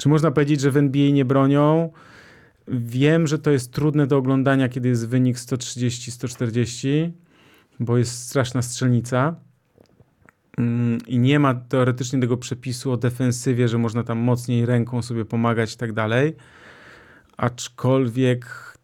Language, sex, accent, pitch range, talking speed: Polish, male, native, 120-135 Hz, 135 wpm